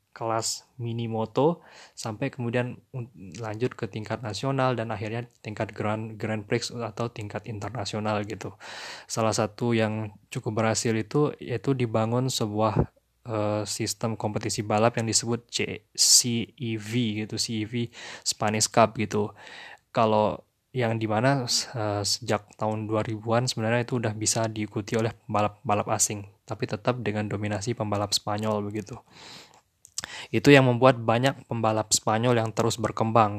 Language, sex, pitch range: English, male, 110-120 Hz